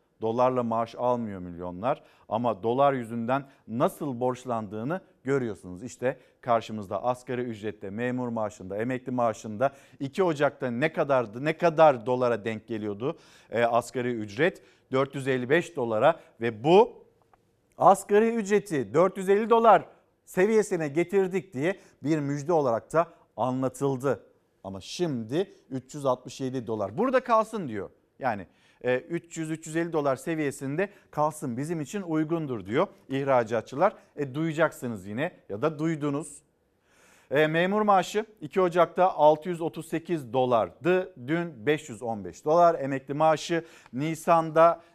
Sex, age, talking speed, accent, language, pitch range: male, 50-69, 110 wpm, native, Turkish, 125-170 Hz